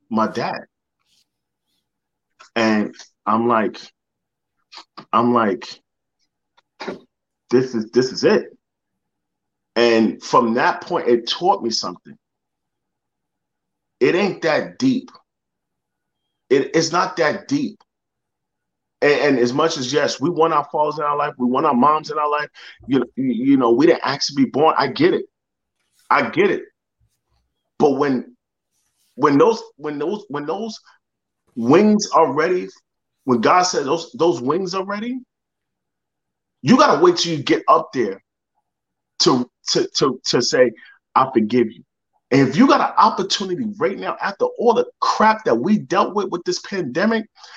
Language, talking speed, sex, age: English, 150 wpm, male, 30-49